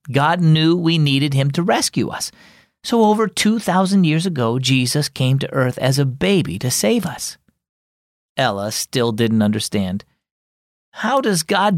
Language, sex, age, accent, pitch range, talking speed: English, male, 40-59, American, 120-180 Hz, 155 wpm